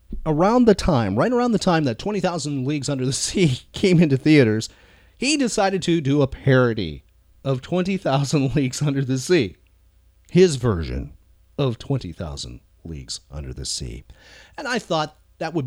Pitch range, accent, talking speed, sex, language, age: 100-165 Hz, American, 155 wpm, male, English, 40-59